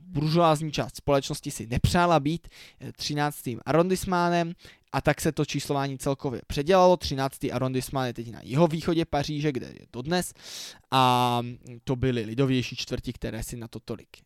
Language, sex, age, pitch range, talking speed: Czech, male, 20-39, 125-150 Hz, 145 wpm